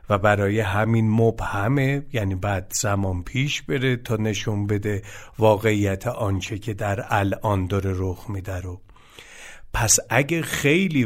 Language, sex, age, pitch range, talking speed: Persian, male, 50-69, 100-135 Hz, 130 wpm